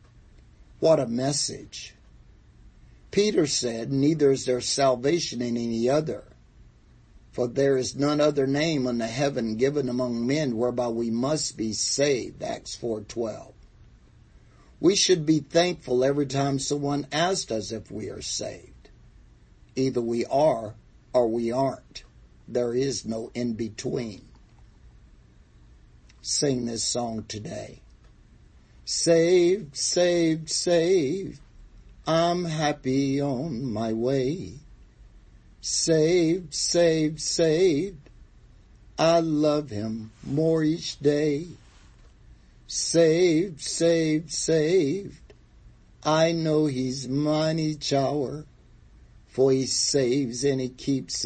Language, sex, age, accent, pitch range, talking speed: English, male, 50-69, American, 120-155 Hz, 105 wpm